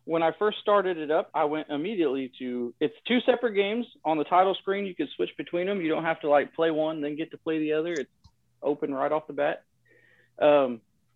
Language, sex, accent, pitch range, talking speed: English, male, American, 145-200 Hz, 230 wpm